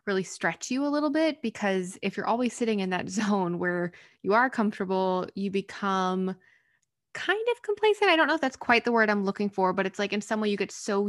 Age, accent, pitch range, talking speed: 20-39, American, 180-235 Hz, 235 wpm